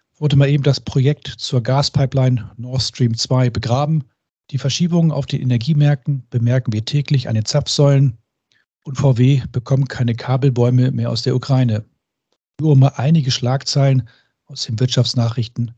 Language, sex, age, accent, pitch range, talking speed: German, male, 40-59, German, 120-140 Hz, 150 wpm